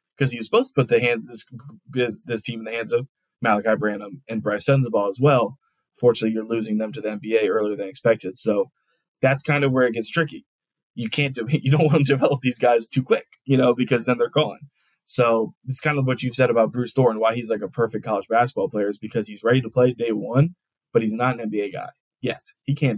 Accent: American